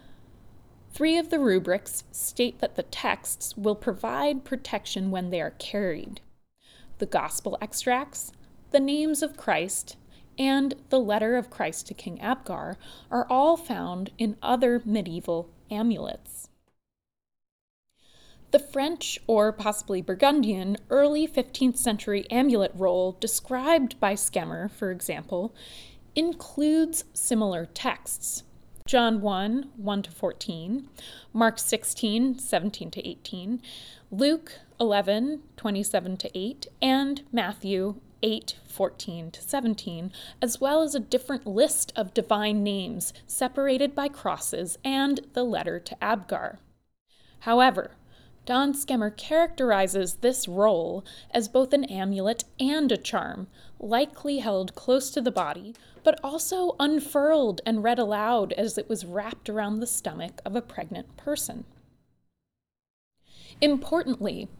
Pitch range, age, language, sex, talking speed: 205-275 Hz, 20-39, English, female, 120 wpm